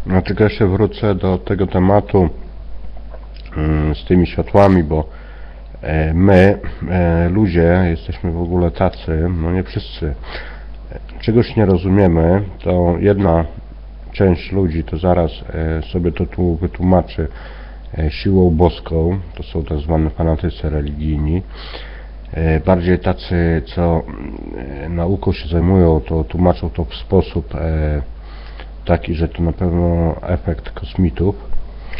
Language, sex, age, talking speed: Polish, male, 50-69, 110 wpm